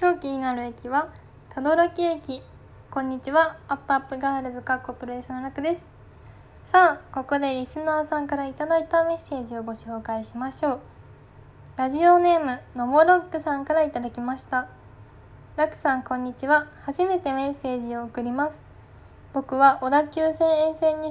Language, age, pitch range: Japanese, 10-29, 250-300 Hz